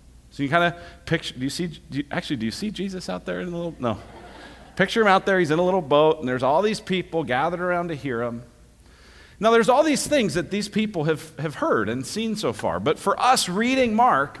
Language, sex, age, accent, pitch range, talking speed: English, male, 40-59, American, 130-195 Hz, 240 wpm